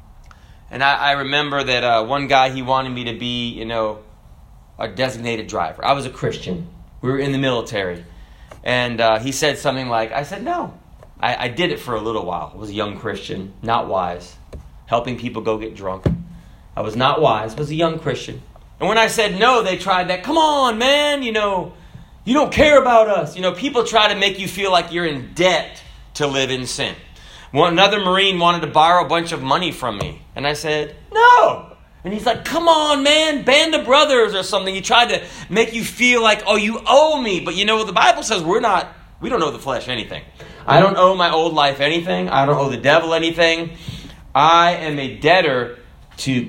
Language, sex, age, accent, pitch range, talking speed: English, male, 30-49, American, 125-200 Hz, 220 wpm